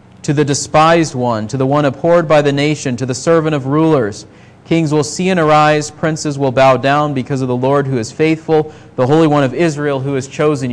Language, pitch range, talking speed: English, 130-155 Hz, 225 wpm